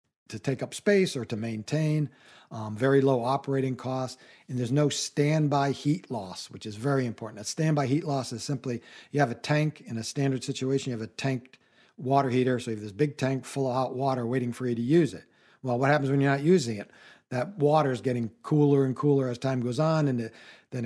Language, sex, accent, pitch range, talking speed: English, male, American, 120-145 Hz, 230 wpm